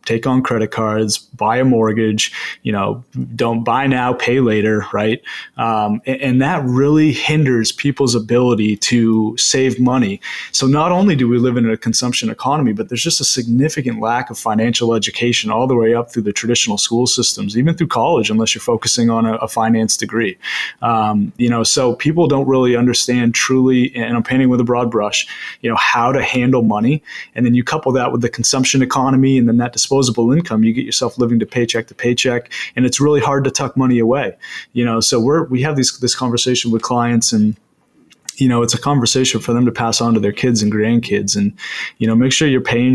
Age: 30-49